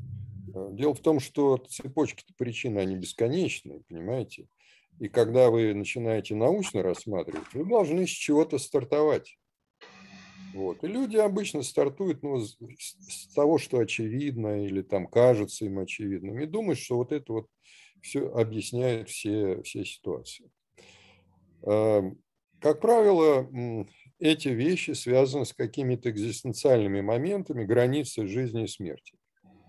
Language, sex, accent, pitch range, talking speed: Russian, male, native, 100-150 Hz, 115 wpm